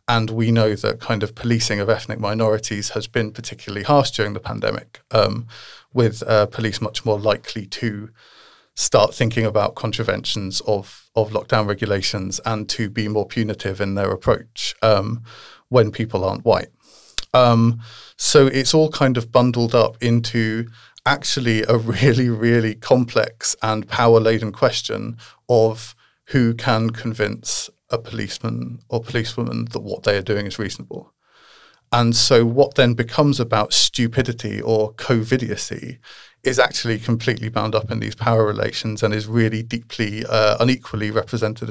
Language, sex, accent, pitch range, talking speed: English, male, British, 110-120 Hz, 150 wpm